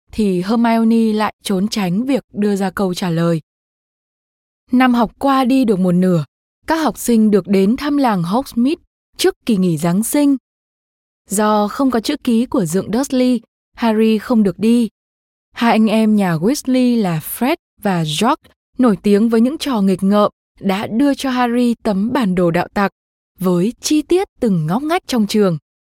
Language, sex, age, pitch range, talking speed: Vietnamese, female, 20-39, 195-255 Hz, 175 wpm